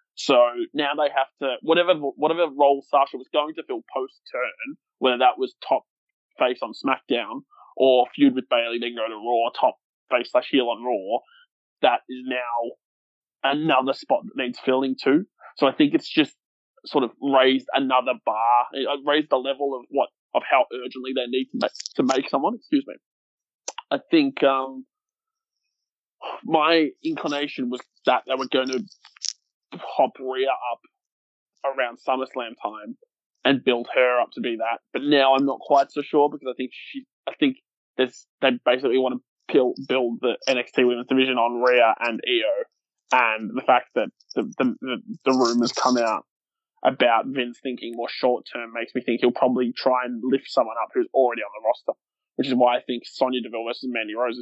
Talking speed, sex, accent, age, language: 185 wpm, male, Australian, 20-39, English